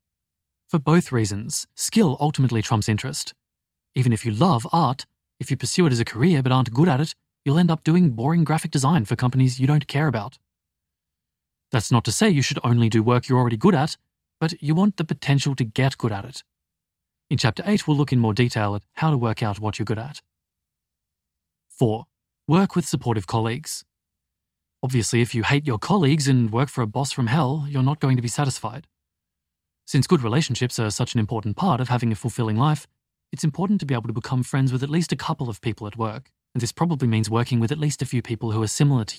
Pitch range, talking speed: 110-150 Hz, 225 wpm